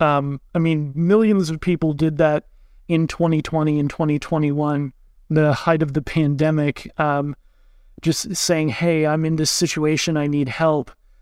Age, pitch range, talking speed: 30-49, 155-175 Hz, 150 wpm